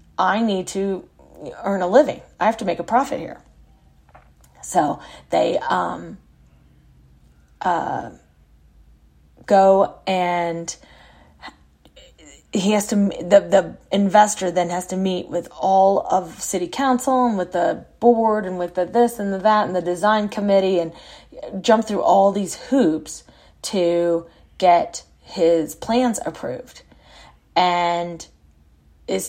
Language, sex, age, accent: English, female, 30-49, American